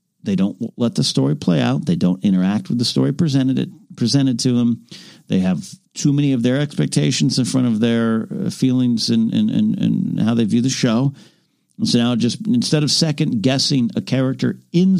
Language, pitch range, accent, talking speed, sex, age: English, 140-200 Hz, American, 190 wpm, male, 50-69